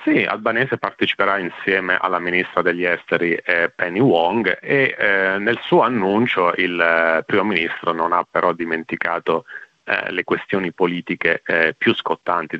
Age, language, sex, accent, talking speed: 30-49, Italian, male, native, 150 wpm